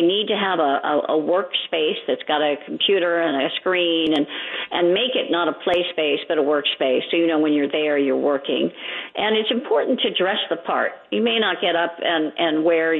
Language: English